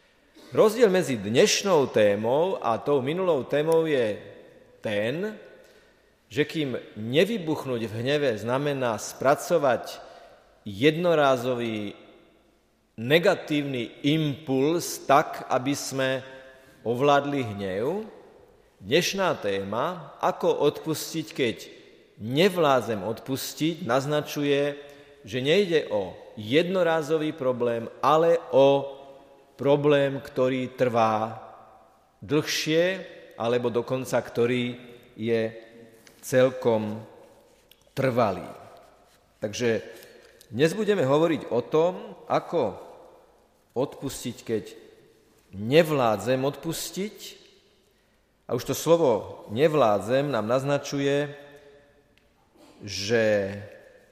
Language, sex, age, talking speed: Slovak, male, 40-59, 75 wpm